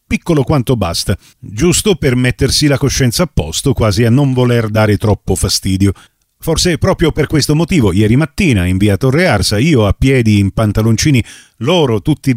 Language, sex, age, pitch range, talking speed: Italian, male, 40-59, 110-150 Hz, 165 wpm